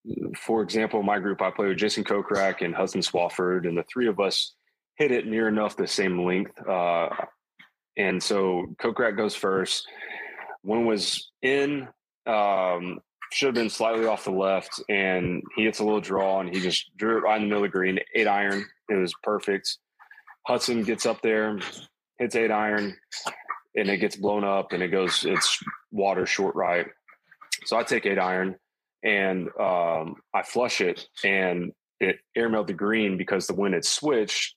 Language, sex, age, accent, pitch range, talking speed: English, male, 20-39, American, 95-110 Hz, 180 wpm